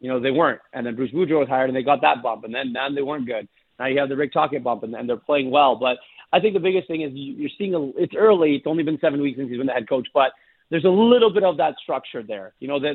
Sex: male